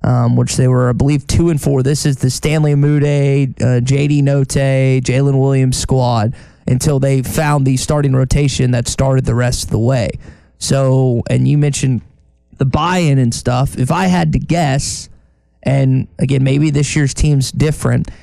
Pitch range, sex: 125-145 Hz, male